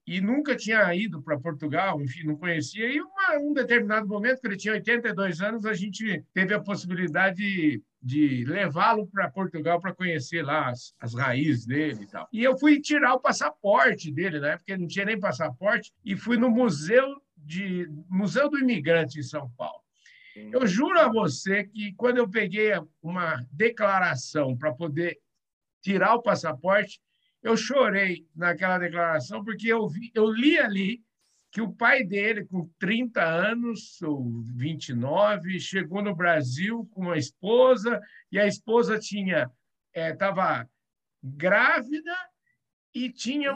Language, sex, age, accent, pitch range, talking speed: Portuguese, male, 60-79, Brazilian, 165-240 Hz, 150 wpm